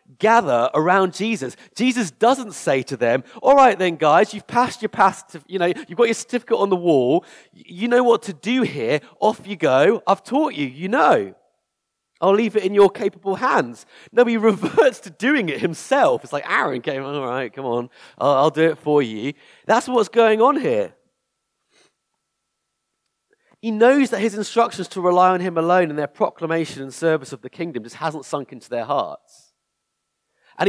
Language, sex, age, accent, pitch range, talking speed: English, male, 30-49, British, 165-225 Hz, 190 wpm